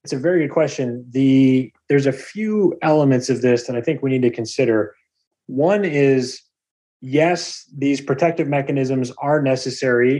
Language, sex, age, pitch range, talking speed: English, male, 30-49, 125-150 Hz, 160 wpm